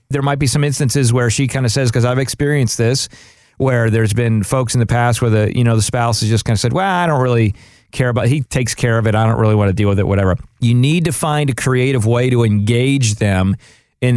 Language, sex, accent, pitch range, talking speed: English, male, American, 110-135 Hz, 270 wpm